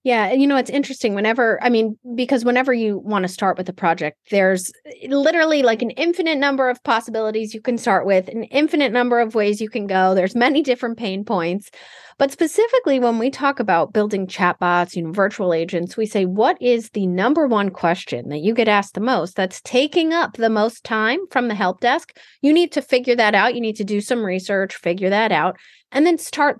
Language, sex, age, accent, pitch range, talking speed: English, female, 30-49, American, 185-255 Hz, 220 wpm